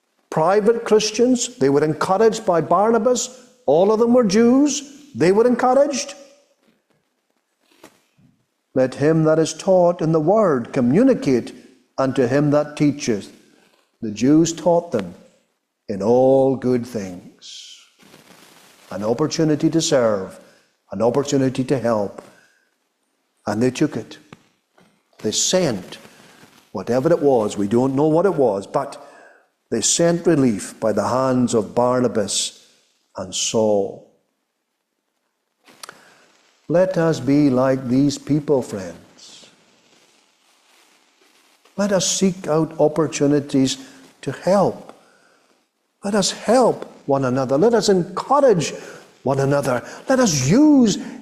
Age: 60-79